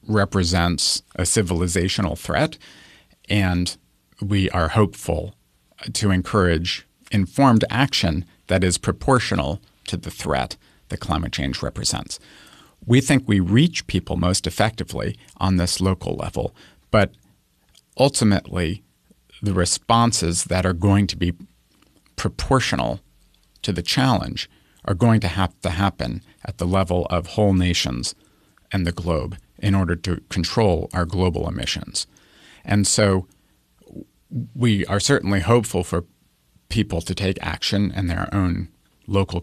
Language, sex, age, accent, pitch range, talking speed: English, male, 50-69, American, 85-105 Hz, 125 wpm